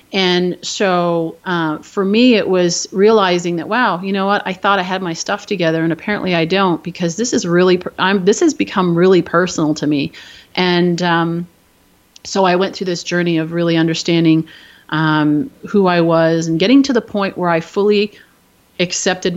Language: English